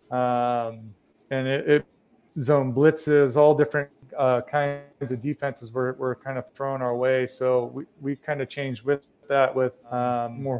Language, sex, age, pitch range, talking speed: English, male, 30-49, 125-140 Hz, 170 wpm